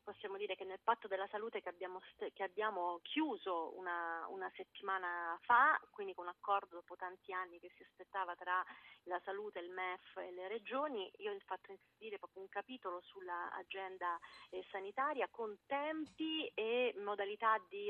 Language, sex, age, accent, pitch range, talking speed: Italian, female, 30-49, native, 185-235 Hz, 170 wpm